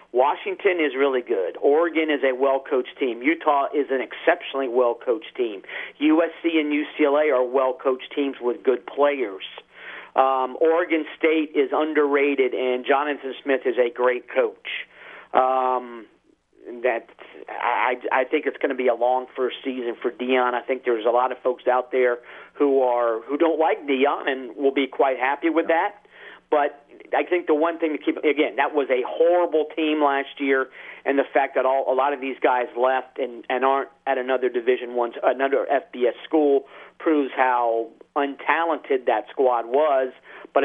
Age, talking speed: 40-59, 175 wpm